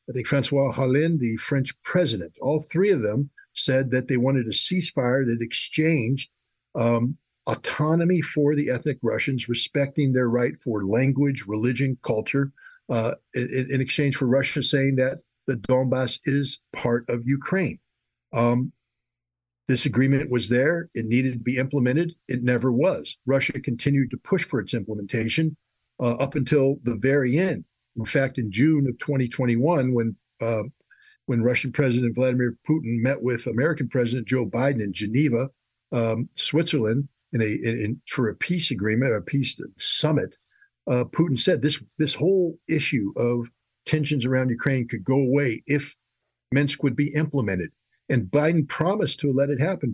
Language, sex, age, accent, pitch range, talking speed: English, male, 50-69, American, 120-145 Hz, 160 wpm